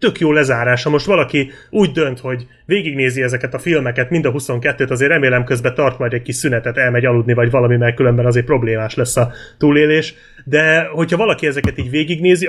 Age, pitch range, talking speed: 30-49, 120-155 Hz, 195 wpm